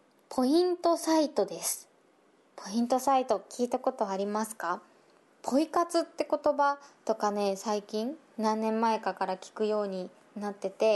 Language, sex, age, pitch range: Japanese, female, 20-39, 200-260 Hz